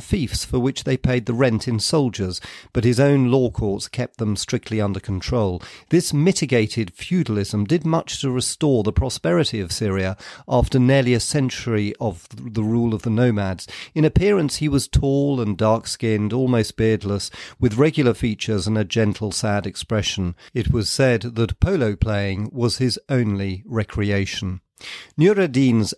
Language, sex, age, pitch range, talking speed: English, male, 40-59, 105-130 Hz, 155 wpm